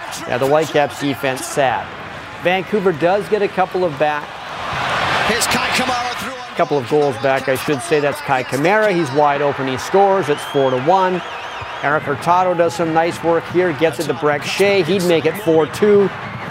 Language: English